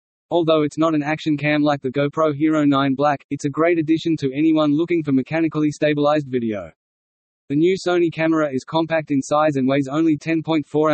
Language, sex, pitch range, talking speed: English, male, 135-160 Hz, 190 wpm